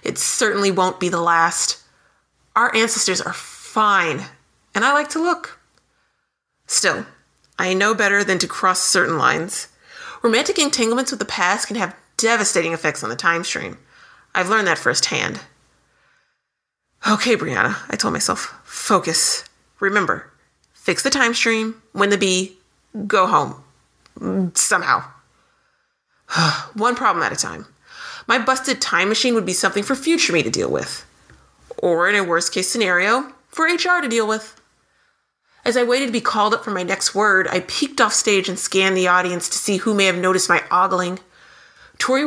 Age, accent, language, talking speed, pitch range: 30-49, American, English, 160 wpm, 180-240 Hz